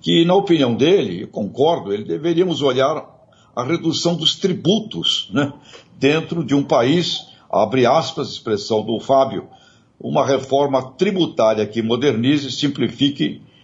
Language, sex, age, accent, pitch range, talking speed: Portuguese, male, 60-79, Brazilian, 115-155 Hz, 130 wpm